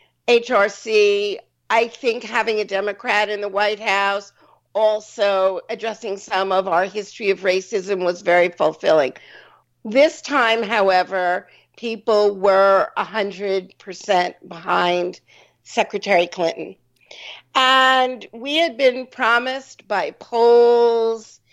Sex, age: female, 50-69